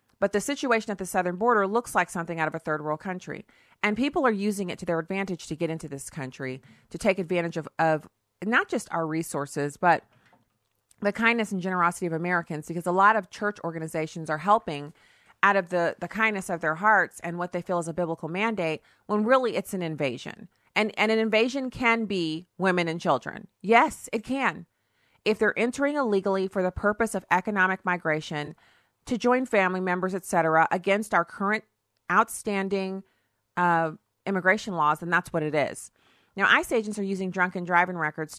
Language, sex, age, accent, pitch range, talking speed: English, female, 30-49, American, 160-200 Hz, 190 wpm